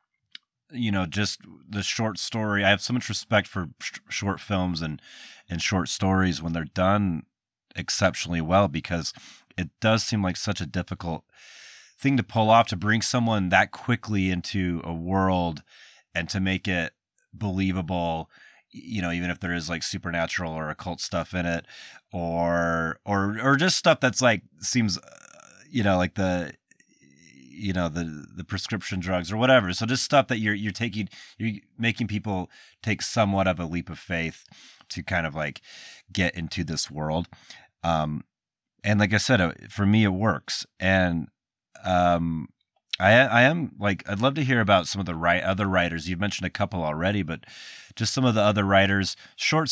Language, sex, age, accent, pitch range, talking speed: English, male, 30-49, American, 85-105 Hz, 175 wpm